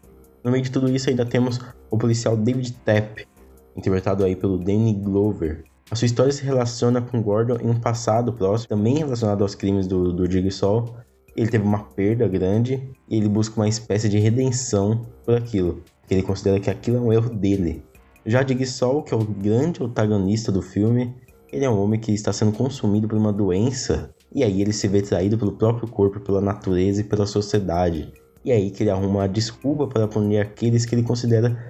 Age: 20-39